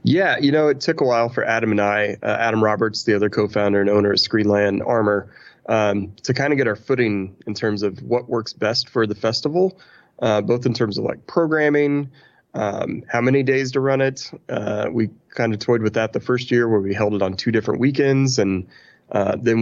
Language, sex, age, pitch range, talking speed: English, male, 30-49, 105-125 Hz, 225 wpm